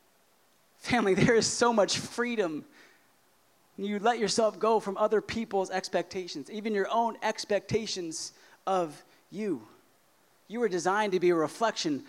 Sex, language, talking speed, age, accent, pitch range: male, English, 135 wpm, 20-39, American, 190-230 Hz